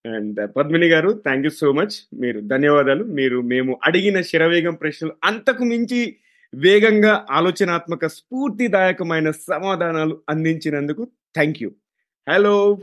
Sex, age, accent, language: male, 30-49, native, Telugu